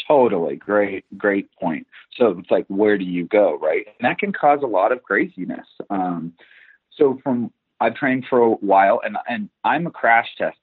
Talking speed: 190 wpm